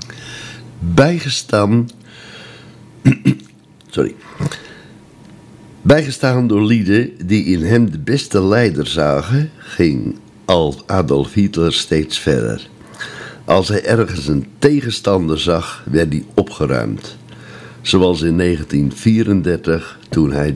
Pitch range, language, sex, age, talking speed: 80-110 Hz, Dutch, male, 60-79, 90 wpm